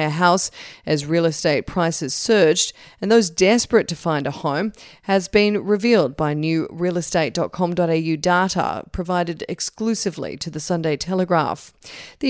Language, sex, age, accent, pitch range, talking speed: English, female, 40-59, Australian, 165-200 Hz, 130 wpm